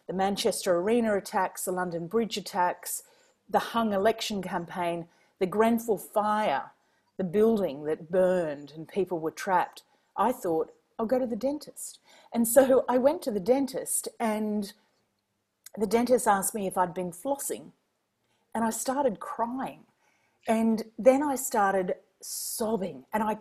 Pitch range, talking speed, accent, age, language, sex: 190-255 Hz, 145 wpm, Australian, 40-59, English, female